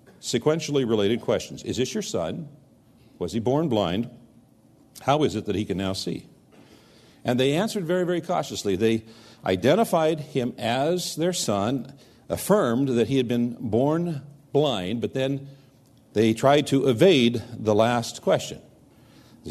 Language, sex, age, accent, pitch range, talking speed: English, male, 50-69, American, 115-150 Hz, 150 wpm